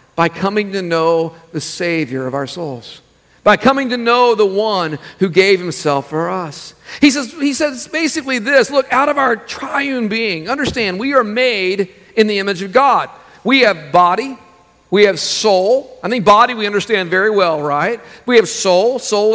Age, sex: 50-69, male